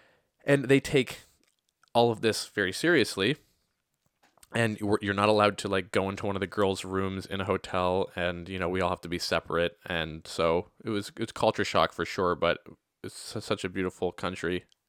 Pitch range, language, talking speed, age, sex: 95-110 Hz, English, 195 wpm, 20-39, male